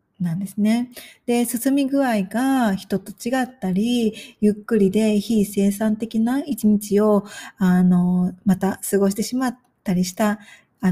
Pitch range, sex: 195-260 Hz, female